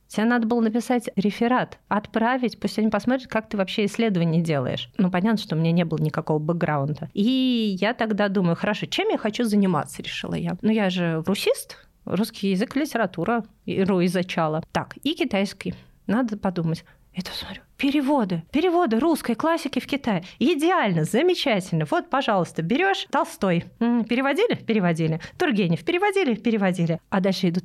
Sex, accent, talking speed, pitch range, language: female, native, 155 wpm, 165-230 Hz, Russian